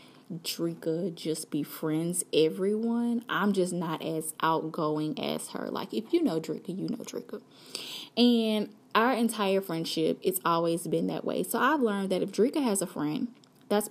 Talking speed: 170 wpm